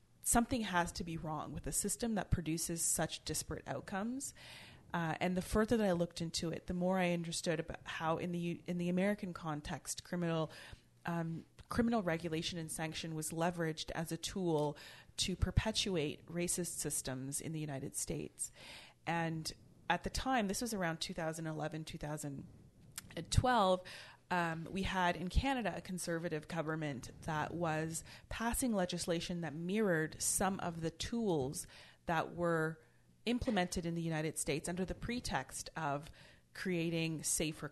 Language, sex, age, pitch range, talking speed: English, female, 30-49, 155-185 Hz, 150 wpm